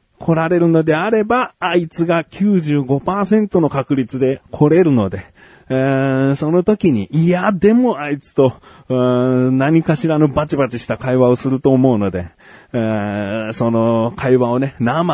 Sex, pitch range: male, 115-180 Hz